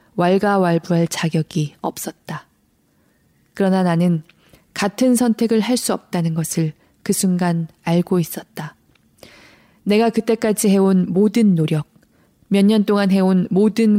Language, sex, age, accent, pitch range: Korean, female, 20-39, native, 165-210 Hz